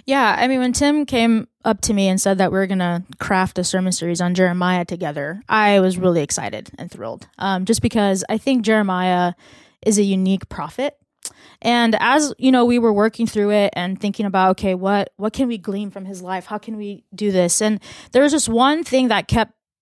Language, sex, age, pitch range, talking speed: English, female, 20-39, 195-250 Hz, 220 wpm